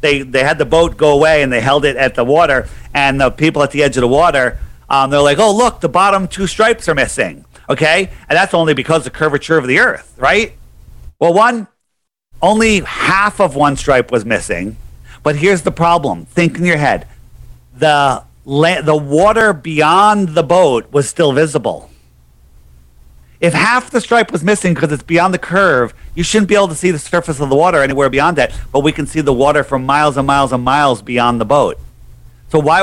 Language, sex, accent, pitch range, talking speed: English, male, American, 135-175 Hz, 210 wpm